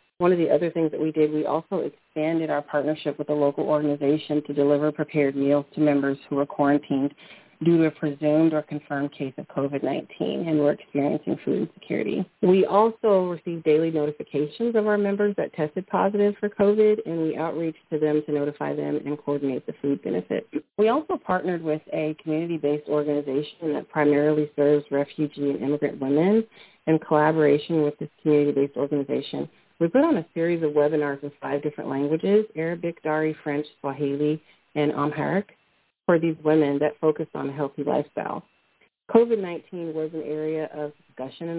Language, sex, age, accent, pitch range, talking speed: English, female, 40-59, American, 145-165 Hz, 170 wpm